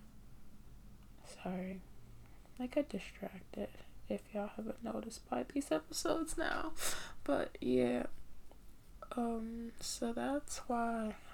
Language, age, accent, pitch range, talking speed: English, 10-29, American, 190-250 Hz, 100 wpm